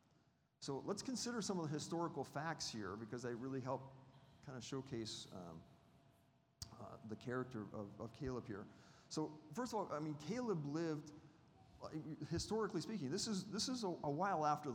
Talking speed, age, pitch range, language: 170 wpm, 40-59, 130-170 Hz, English